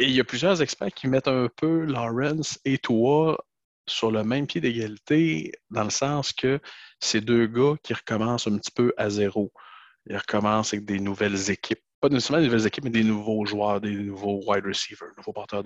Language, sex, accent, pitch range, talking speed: French, male, Canadian, 100-125 Hz, 205 wpm